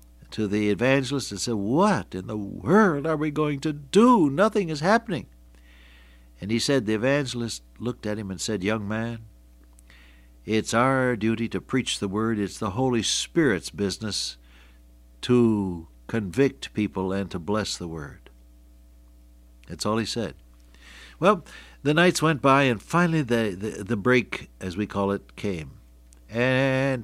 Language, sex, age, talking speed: English, male, 60-79, 155 wpm